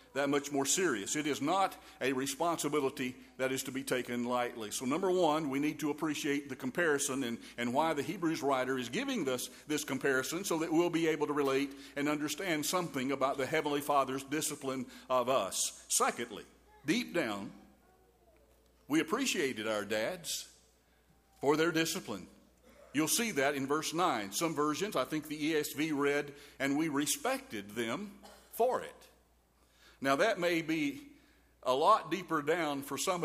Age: 50-69